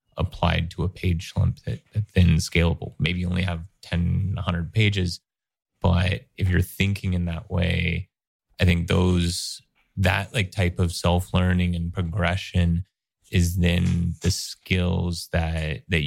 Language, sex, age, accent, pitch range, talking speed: English, male, 20-39, American, 85-95 Hz, 145 wpm